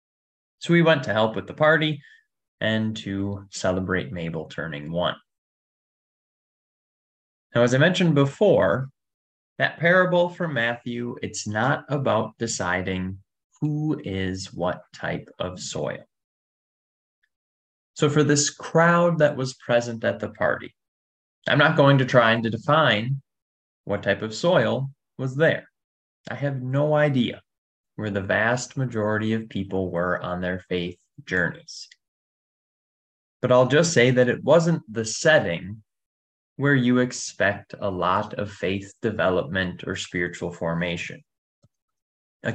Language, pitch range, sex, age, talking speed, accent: English, 95-135 Hz, male, 20-39, 130 wpm, American